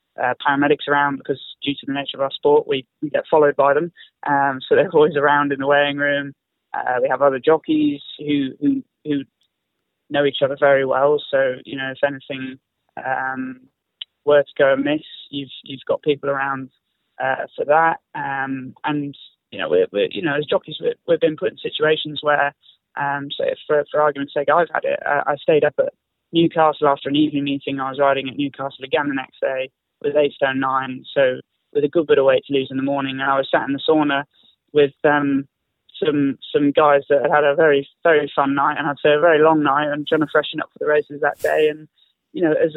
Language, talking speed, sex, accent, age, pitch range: English, 220 wpm, male, British, 20-39, 140-160 Hz